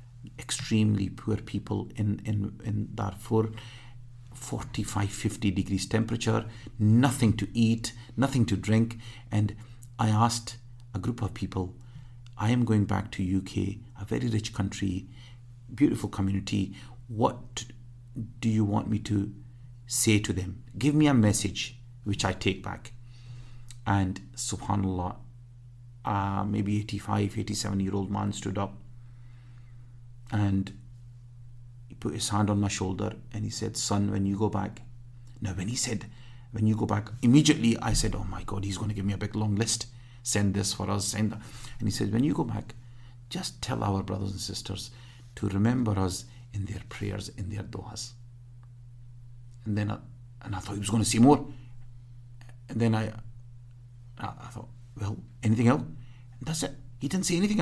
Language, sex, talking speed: English, male, 160 wpm